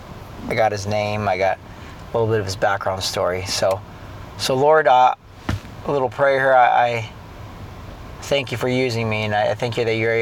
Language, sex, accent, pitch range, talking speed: English, male, American, 100-125 Hz, 200 wpm